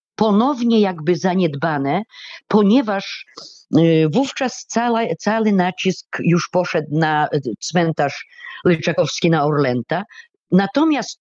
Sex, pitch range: female, 160-245 Hz